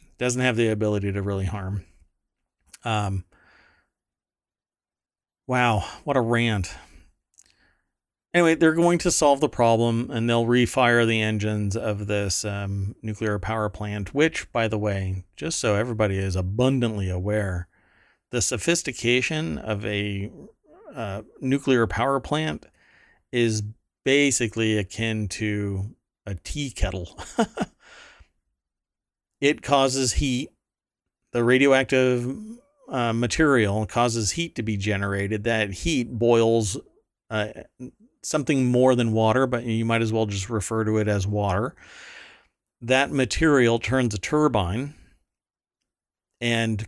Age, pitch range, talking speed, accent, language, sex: 40-59, 105-125 Hz, 120 wpm, American, English, male